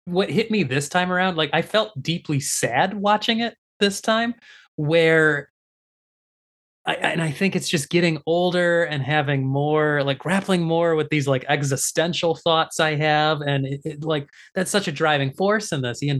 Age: 20-39